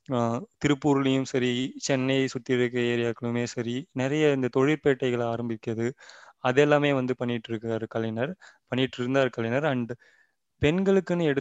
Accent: native